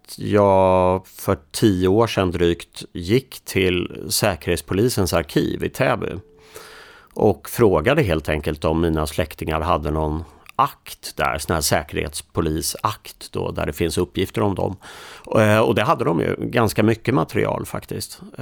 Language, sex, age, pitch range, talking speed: Swedish, male, 40-59, 85-105 Hz, 130 wpm